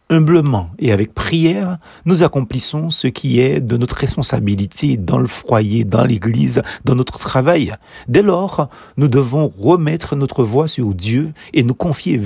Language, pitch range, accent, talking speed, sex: French, 120-170 Hz, French, 155 wpm, male